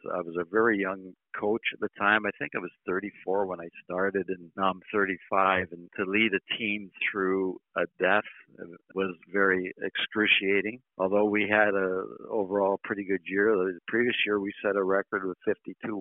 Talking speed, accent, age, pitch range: 185 wpm, American, 60-79, 90-105 Hz